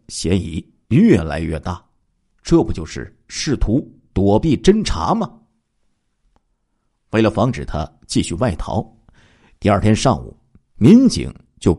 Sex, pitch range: male, 85-120 Hz